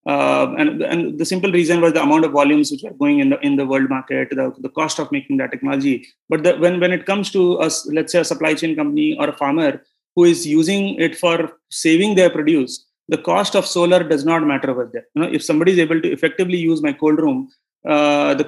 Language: English